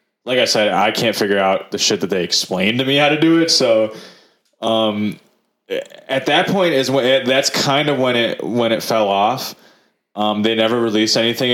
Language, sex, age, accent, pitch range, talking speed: English, male, 20-39, American, 100-120 Hz, 210 wpm